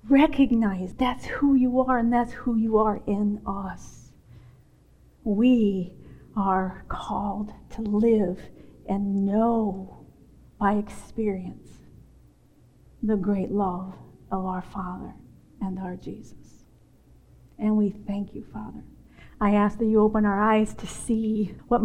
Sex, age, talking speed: female, 40-59, 125 wpm